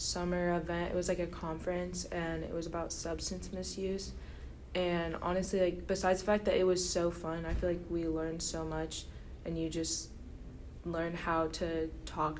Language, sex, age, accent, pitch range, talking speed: English, female, 20-39, American, 155-175 Hz, 185 wpm